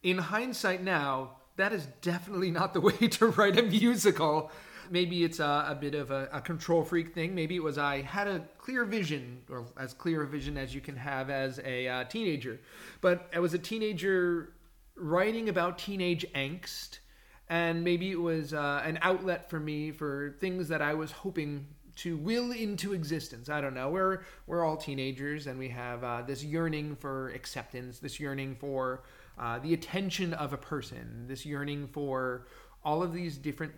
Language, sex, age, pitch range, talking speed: English, male, 30-49, 135-175 Hz, 185 wpm